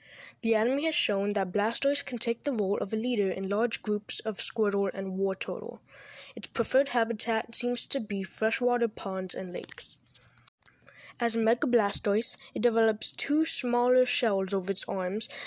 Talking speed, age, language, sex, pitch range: 160 wpm, 10-29, English, female, 200-240 Hz